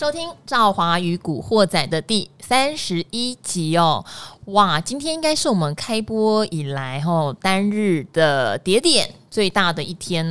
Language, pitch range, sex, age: Chinese, 165-230 Hz, female, 20-39